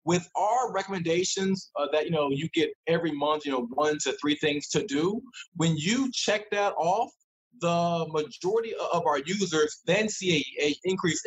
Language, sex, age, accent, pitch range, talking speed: English, male, 20-39, American, 155-210 Hz, 180 wpm